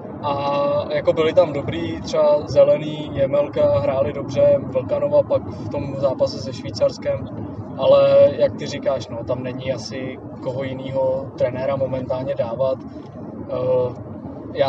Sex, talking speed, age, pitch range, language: male, 125 wpm, 20-39, 130-150 Hz, Czech